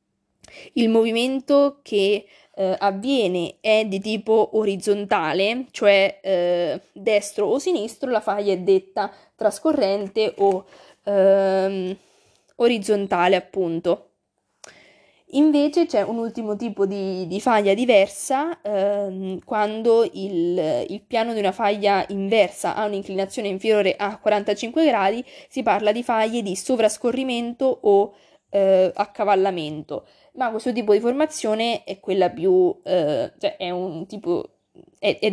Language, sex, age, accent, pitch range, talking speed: Italian, female, 20-39, native, 195-235 Hz, 105 wpm